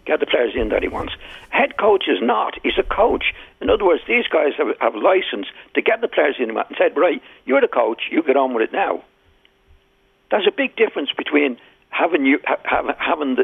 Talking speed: 220 wpm